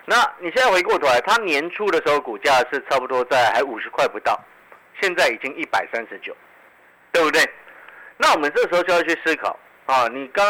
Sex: male